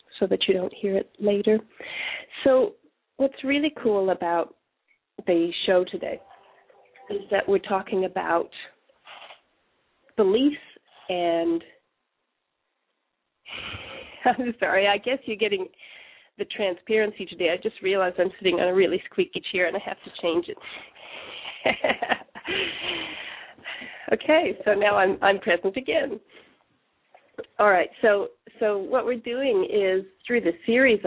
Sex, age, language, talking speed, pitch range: female, 40-59, English, 125 wpm, 180-230 Hz